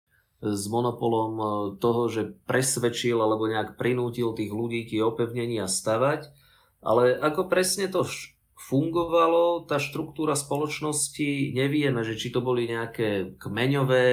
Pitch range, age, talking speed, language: 115-145 Hz, 30-49, 115 wpm, Slovak